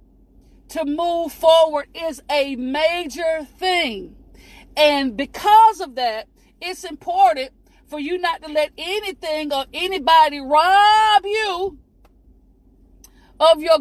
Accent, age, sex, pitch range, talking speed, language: American, 40-59, female, 280-350 Hz, 110 wpm, English